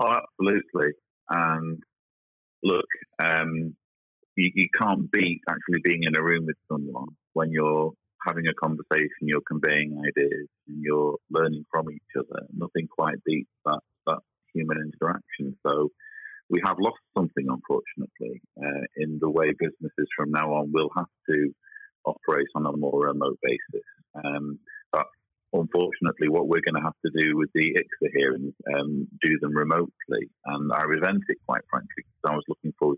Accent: British